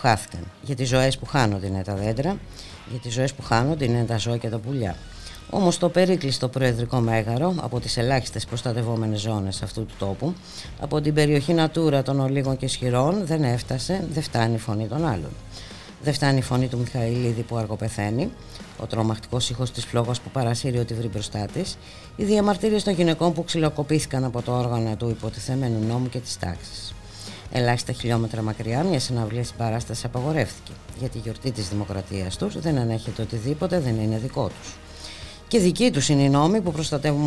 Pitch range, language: 105-140 Hz, Greek